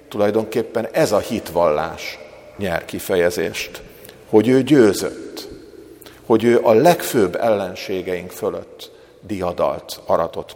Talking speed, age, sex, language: 95 wpm, 50-69, male, Hungarian